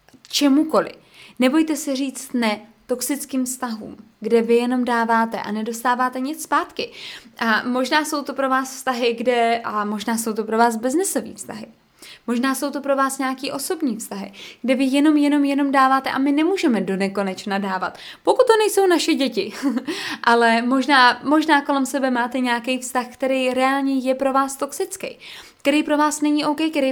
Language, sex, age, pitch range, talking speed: Czech, female, 20-39, 235-295 Hz, 170 wpm